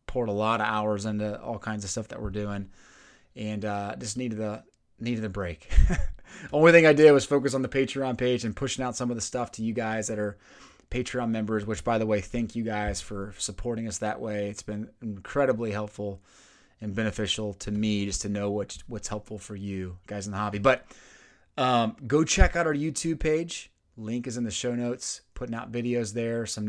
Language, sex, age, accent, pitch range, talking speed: English, male, 30-49, American, 105-125 Hz, 215 wpm